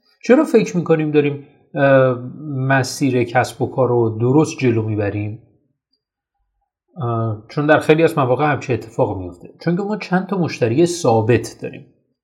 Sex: male